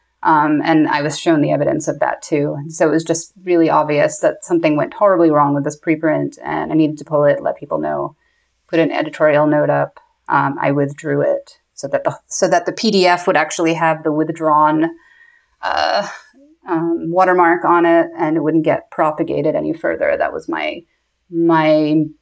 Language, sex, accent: English, female, American